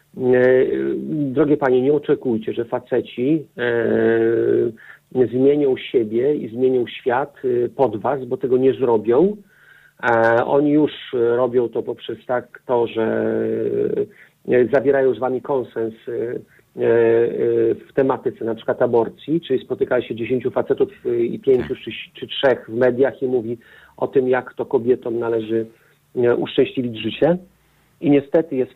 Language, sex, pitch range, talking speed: Polish, male, 115-150 Hz, 120 wpm